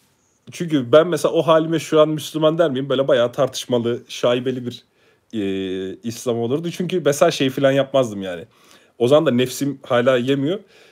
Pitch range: 125-165 Hz